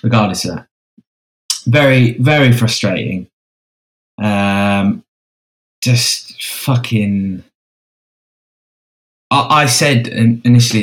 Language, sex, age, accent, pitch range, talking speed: English, male, 20-39, British, 95-115 Hz, 70 wpm